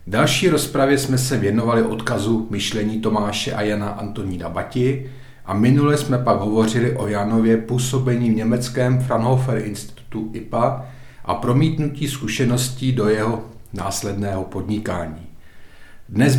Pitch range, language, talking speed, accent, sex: 105-125 Hz, Czech, 120 wpm, native, male